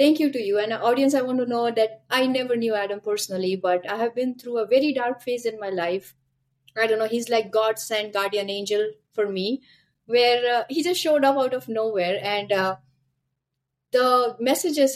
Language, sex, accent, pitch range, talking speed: English, female, Indian, 175-235 Hz, 210 wpm